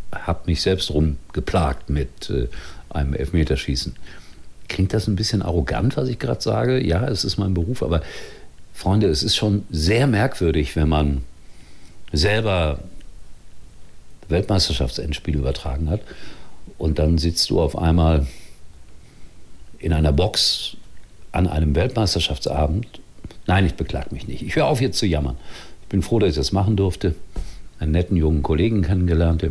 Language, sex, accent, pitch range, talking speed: German, male, German, 80-100 Hz, 150 wpm